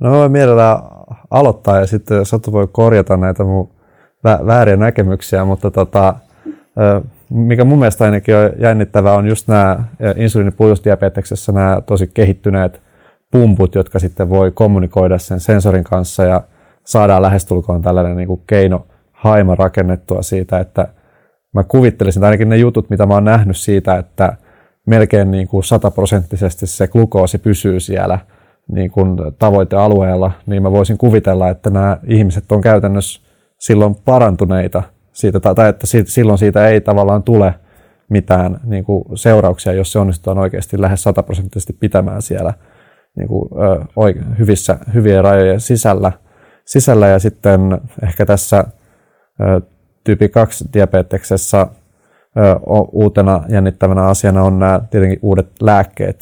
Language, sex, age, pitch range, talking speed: Finnish, male, 30-49, 95-110 Hz, 130 wpm